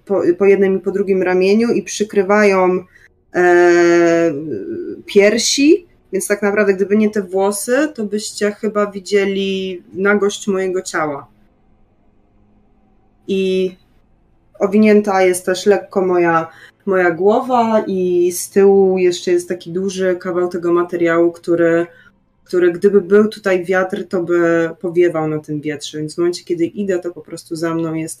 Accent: native